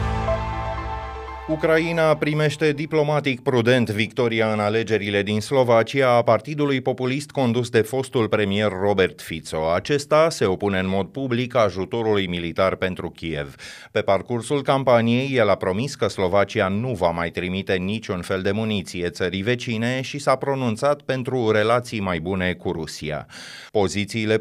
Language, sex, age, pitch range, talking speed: Romanian, male, 30-49, 95-125 Hz, 140 wpm